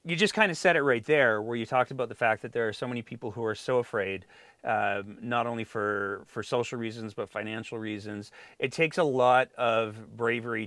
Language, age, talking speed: English, 30-49, 225 wpm